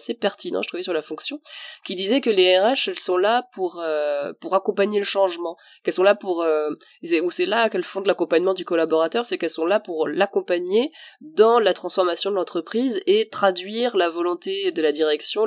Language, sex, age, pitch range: French, female, 20-39, 155-215 Hz